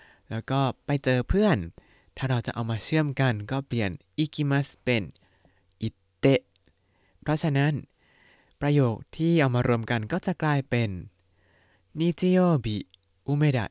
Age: 20-39